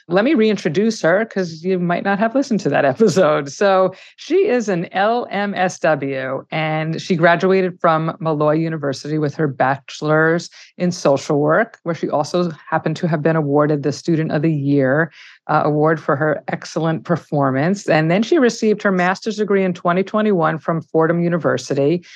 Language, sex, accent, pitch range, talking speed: English, female, American, 155-195 Hz, 165 wpm